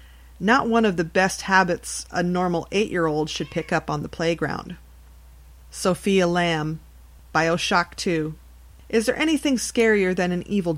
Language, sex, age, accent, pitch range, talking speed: English, female, 40-59, American, 155-195 Hz, 155 wpm